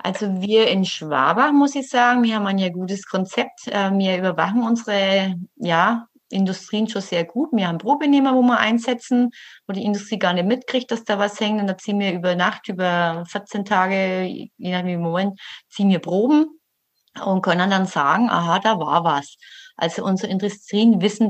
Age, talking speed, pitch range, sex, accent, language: 30-49, 185 wpm, 175-215 Hz, female, German, German